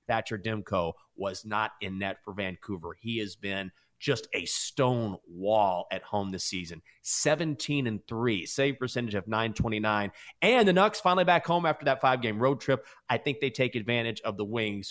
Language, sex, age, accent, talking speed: English, male, 30-49, American, 175 wpm